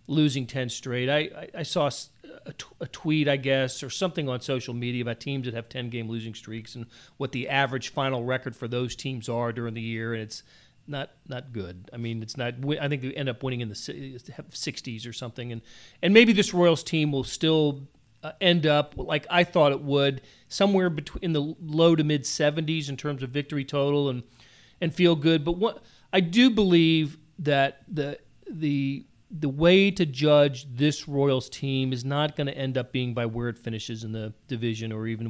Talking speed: 205 wpm